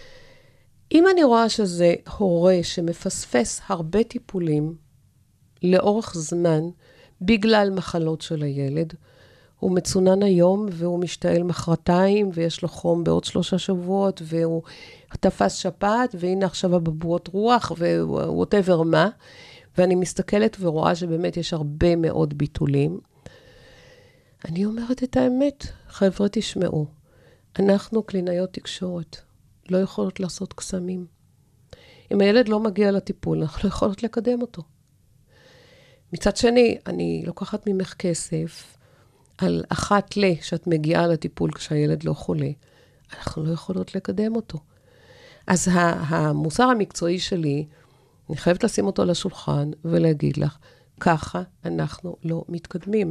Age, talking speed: 50-69, 115 wpm